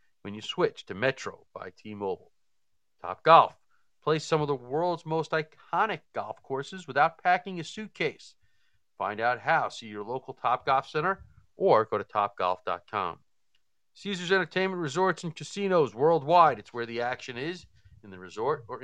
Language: English